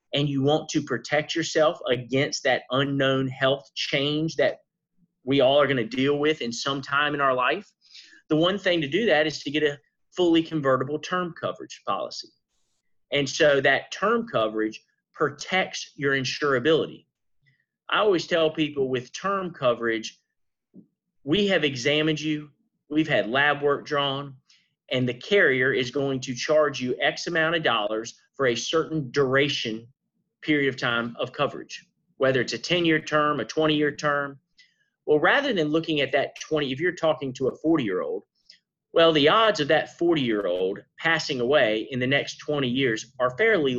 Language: English